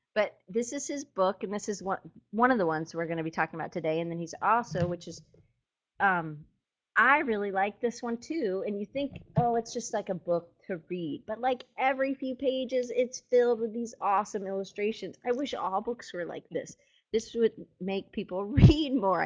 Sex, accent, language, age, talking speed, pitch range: female, American, English, 30-49, 210 wpm, 175-230 Hz